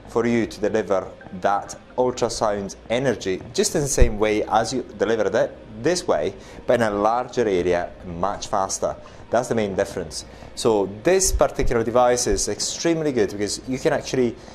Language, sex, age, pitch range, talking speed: English, male, 30-49, 100-125 Hz, 165 wpm